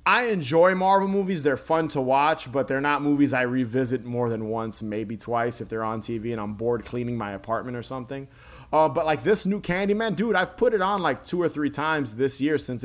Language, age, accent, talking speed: English, 20-39, American, 235 wpm